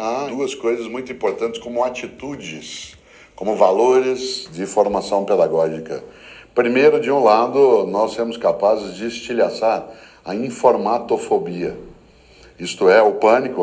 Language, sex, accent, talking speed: Portuguese, male, Brazilian, 120 wpm